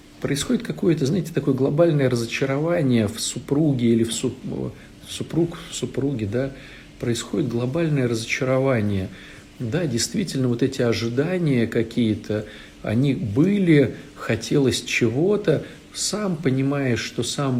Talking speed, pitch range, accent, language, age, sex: 105 wpm, 115-140 Hz, native, Russian, 50-69, male